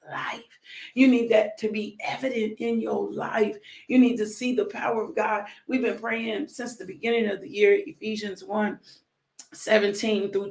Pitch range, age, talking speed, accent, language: 200-225 Hz, 40-59, 175 wpm, American, English